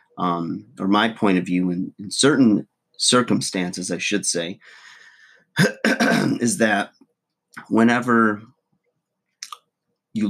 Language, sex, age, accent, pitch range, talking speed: English, male, 30-49, American, 85-100 Hz, 100 wpm